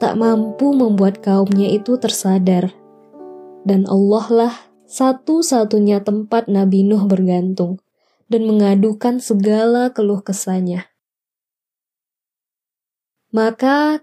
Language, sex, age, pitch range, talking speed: Indonesian, female, 20-39, 205-250 Hz, 80 wpm